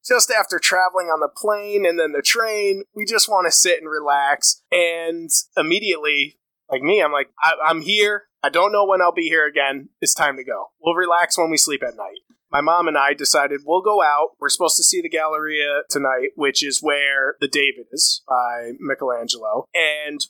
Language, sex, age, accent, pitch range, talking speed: English, male, 20-39, American, 155-250 Hz, 200 wpm